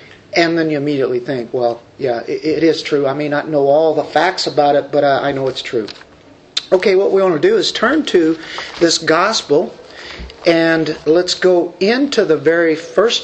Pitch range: 170-240 Hz